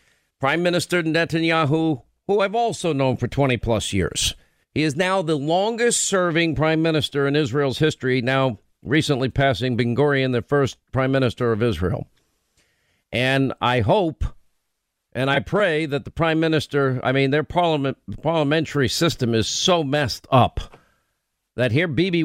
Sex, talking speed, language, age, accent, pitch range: male, 145 wpm, English, 50-69, American, 135-175 Hz